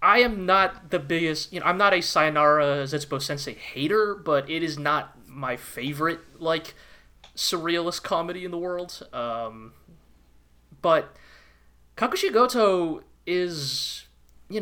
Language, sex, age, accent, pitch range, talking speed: English, male, 20-39, American, 115-175 Hz, 130 wpm